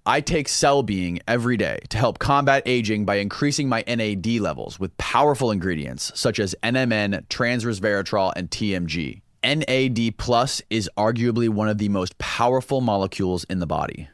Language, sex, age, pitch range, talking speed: English, male, 30-49, 100-125 Hz, 155 wpm